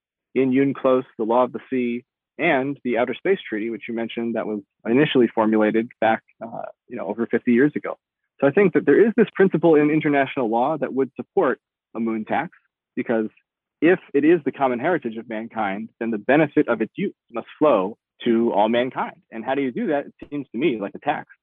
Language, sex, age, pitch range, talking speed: English, male, 30-49, 115-145 Hz, 215 wpm